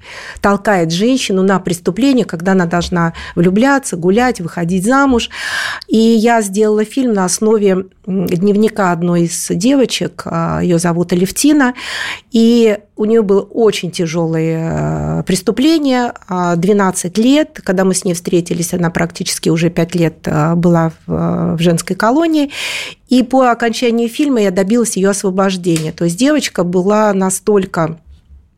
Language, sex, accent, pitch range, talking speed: Russian, female, native, 180-230 Hz, 125 wpm